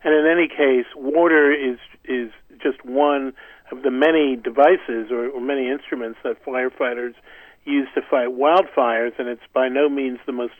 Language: English